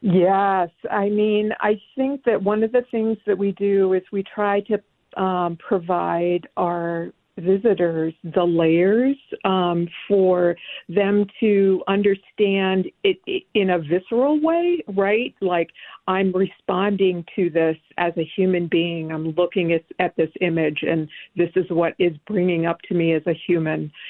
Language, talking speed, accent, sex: English, 155 wpm, American, female